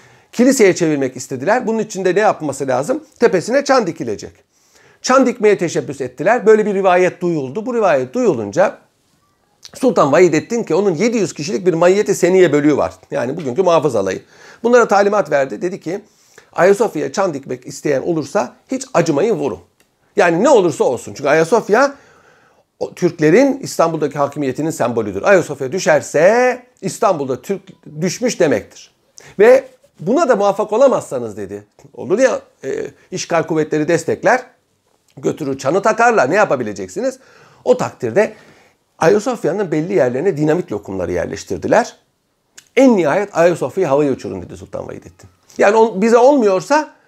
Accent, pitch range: native, 155-240 Hz